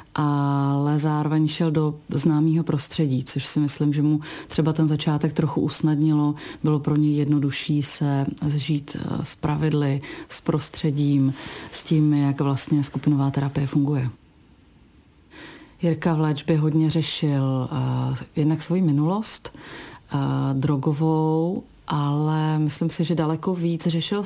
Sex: female